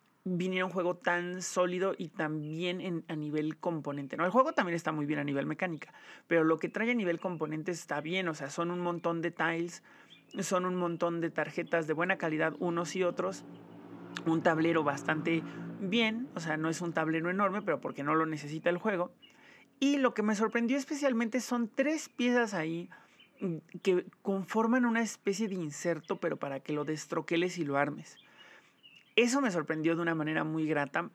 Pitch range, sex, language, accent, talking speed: 160-190 Hz, male, Spanish, Mexican, 190 wpm